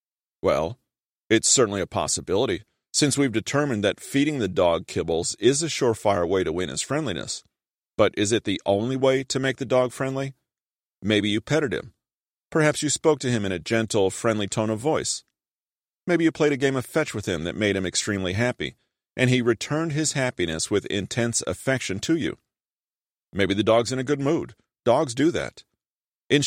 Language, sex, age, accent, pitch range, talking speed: English, male, 40-59, American, 100-140 Hz, 190 wpm